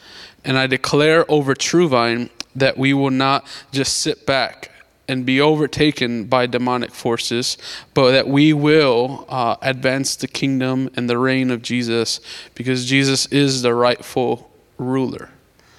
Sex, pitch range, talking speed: male, 130-150 Hz, 145 wpm